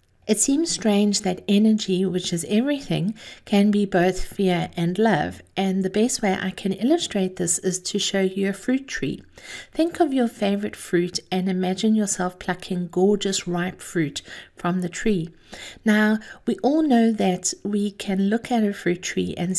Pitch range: 185-225 Hz